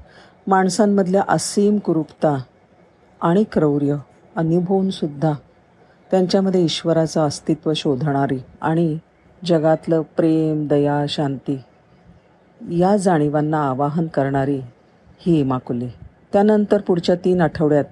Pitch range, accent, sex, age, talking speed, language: 140-175 Hz, native, female, 40-59, 85 wpm, Marathi